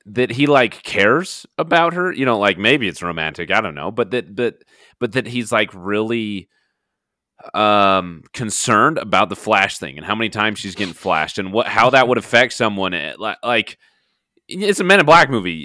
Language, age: English, 30-49